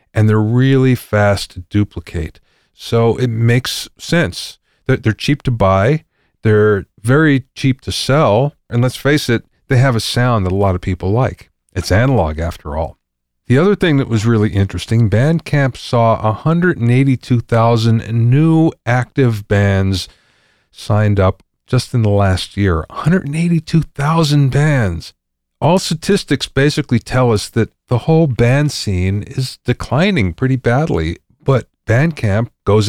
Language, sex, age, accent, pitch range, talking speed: English, male, 40-59, American, 100-135 Hz, 140 wpm